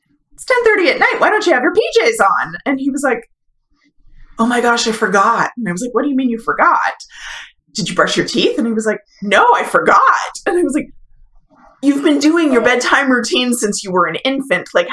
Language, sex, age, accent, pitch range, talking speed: English, female, 20-39, American, 180-270 Hz, 230 wpm